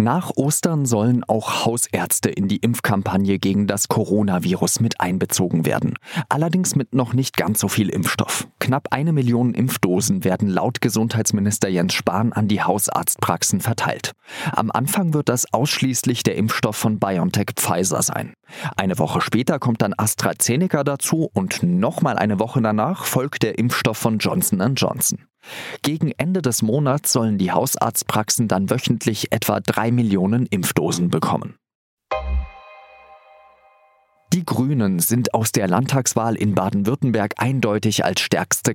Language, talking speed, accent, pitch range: German, 135 wpm, German, 105-140 Hz